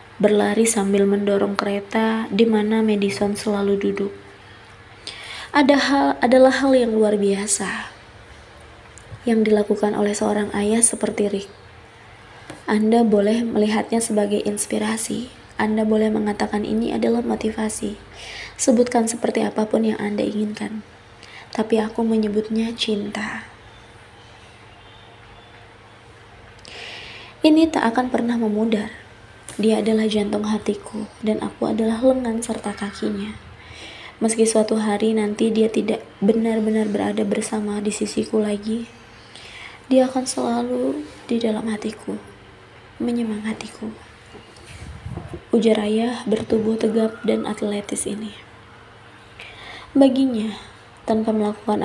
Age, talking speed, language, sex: 20-39, 100 wpm, Indonesian, female